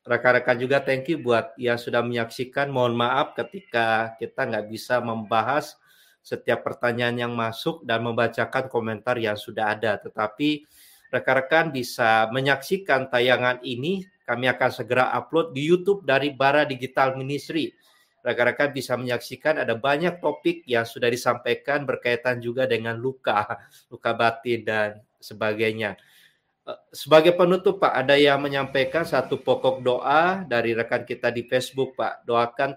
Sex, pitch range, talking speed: male, 120-145 Hz, 135 wpm